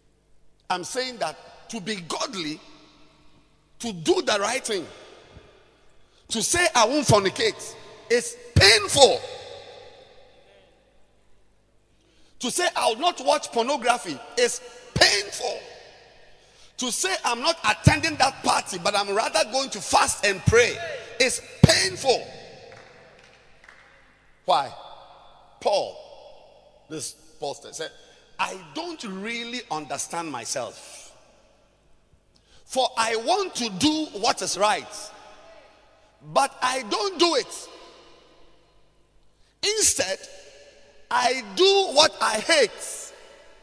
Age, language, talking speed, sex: 50-69, English, 100 wpm, male